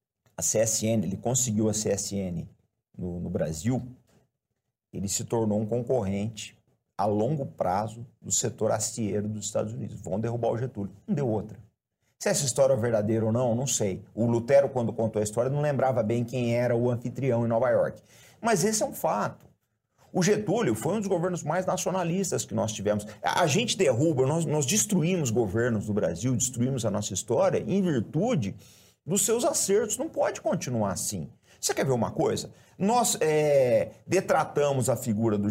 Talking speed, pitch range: 175 wpm, 105-145 Hz